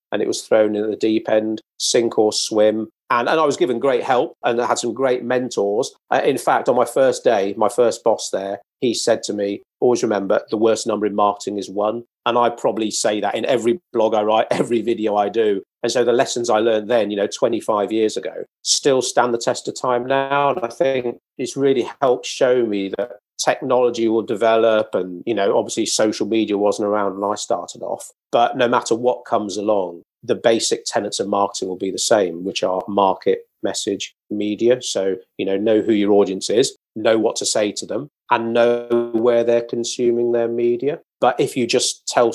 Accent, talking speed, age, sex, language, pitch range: British, 215 wpm, 40-59, male, English, 105-120 Hz